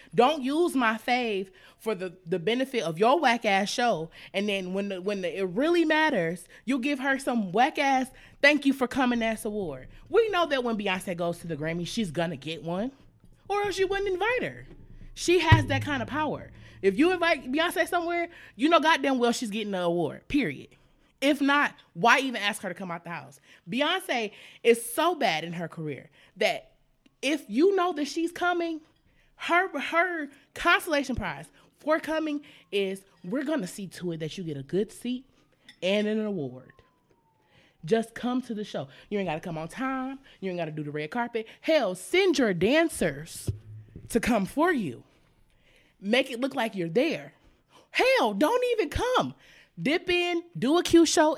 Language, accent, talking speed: English, American, 190 wpm